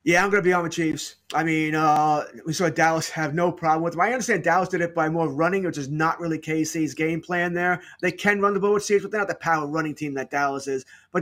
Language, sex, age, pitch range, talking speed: English, male, 30-49, 155-205 Hz, 285 wpm